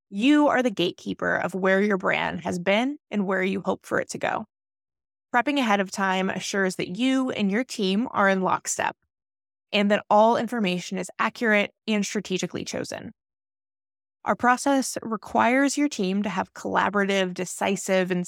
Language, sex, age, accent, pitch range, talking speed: English, female, 20-39, American, 190-250 Hz, 165 wpm